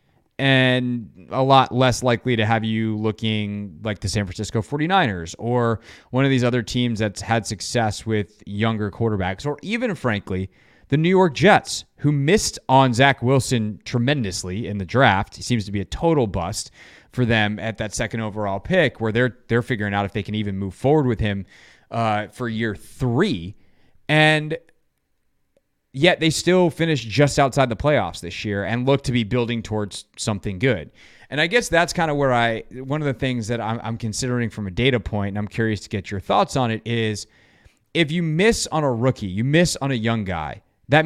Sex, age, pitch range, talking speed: male, 30-49, 105-140 Hz, 195 wpm